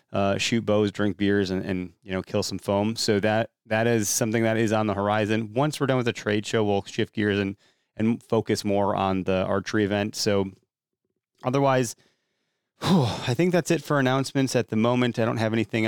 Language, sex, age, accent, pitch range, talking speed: English, male, 30-49, American, 100-120 Hz, 210 wpm